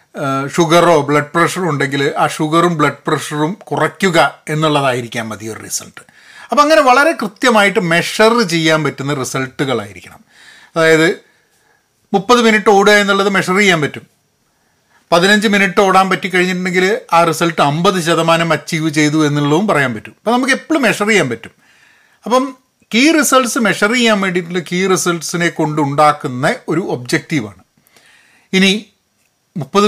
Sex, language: male, Malayalam